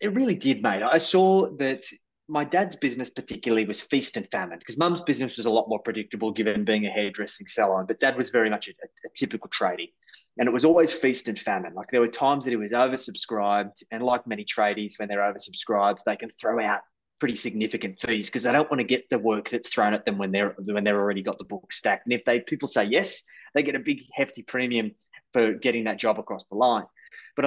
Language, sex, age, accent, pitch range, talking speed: English, male, 20-39, Australian, 110-145 Hz, 235 wpm